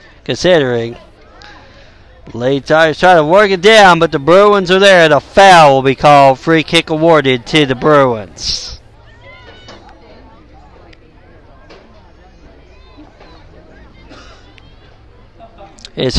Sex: male